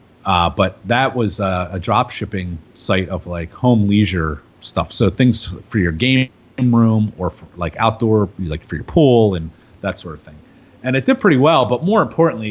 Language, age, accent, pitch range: English, 30-49, American, 90-120 Hz